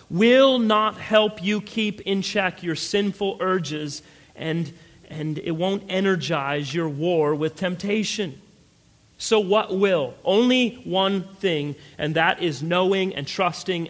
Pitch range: 155-215 Hz